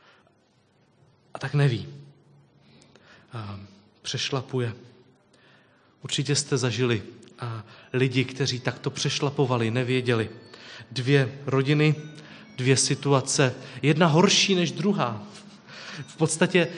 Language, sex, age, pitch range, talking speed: Czech, male, 30-49, 130-165 Hz, 75 wpm